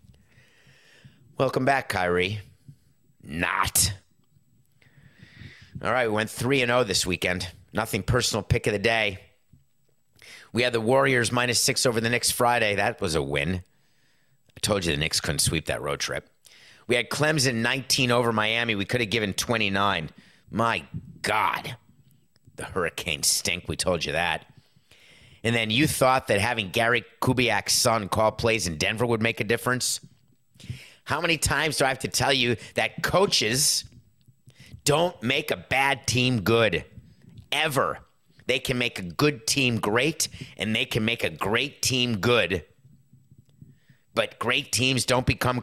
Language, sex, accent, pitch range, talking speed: English, male, American, 105-130 Hz, 155 wpm